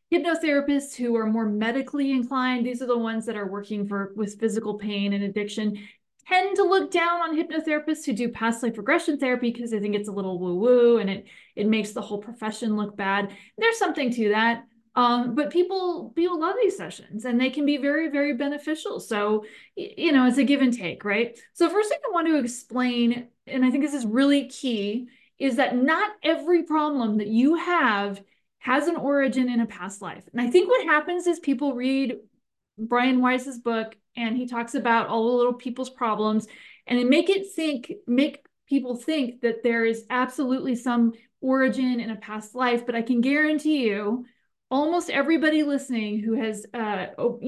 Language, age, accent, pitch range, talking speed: English, 30-49, American, 225-285 Hz, 195 wpm